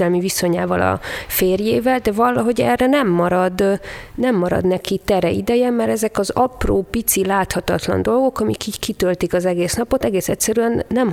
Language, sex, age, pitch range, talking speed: Hungarian, female, 30-49, 175-225 Hz, 155 wpm